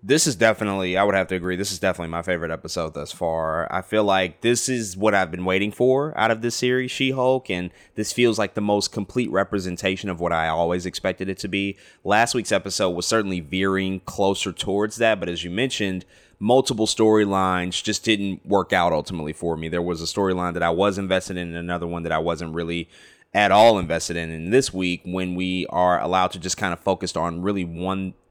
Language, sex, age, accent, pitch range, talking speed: English, male, 20-39, American, 90-110 Hz, 220 wpm